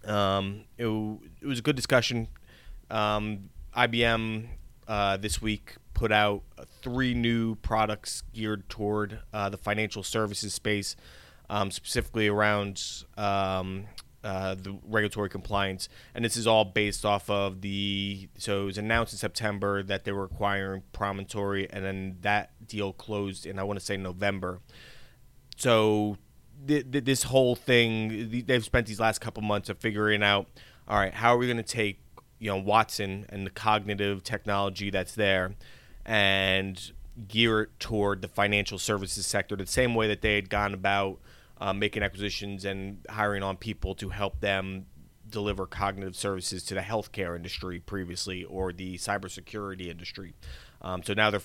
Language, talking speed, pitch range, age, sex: English, 155 wpm, 95-110 Hz, 20-39, male